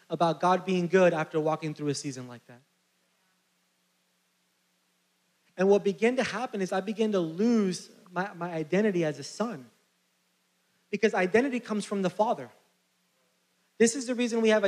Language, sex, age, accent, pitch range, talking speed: English, male, 20-39, American, 150-215 Hz, 160 wpm